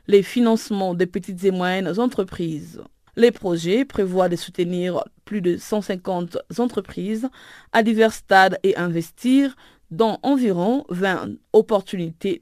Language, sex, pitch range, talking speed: French, female, 185-230 Hz, 120 wpm